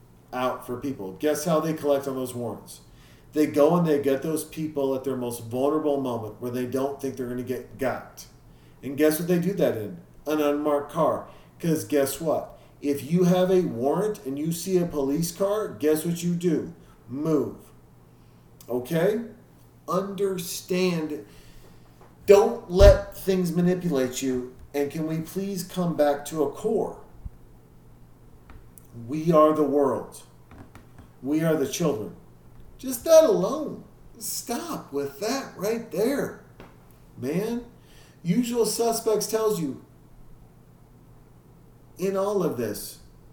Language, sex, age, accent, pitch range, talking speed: English, male, 40-59, American, 125-180 Hz, 140 wpm